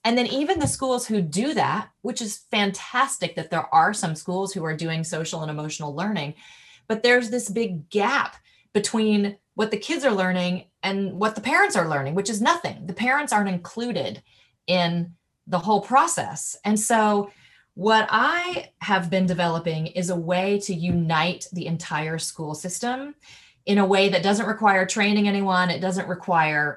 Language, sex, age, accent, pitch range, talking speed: English, female, 30-49, American, 165-210 Hz, 175 wpm